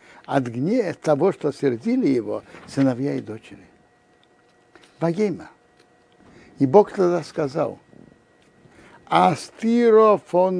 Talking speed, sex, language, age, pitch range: 90 wpm, male, Russian, 60-79, 130-200 Hz